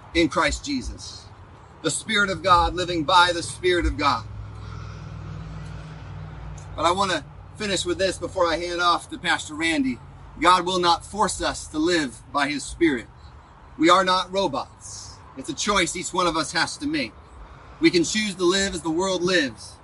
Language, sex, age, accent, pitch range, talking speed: English, male, 30-49, American, 170-255 Hz, 180 wpm